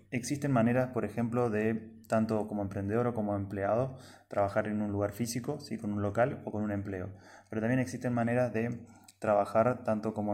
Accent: Argentinian